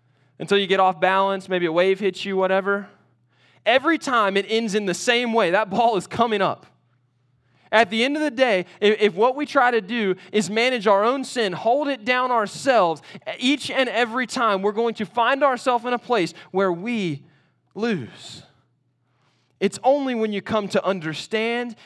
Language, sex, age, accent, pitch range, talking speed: English, male, 20-39, American, 160-230 Hz, 185 wpm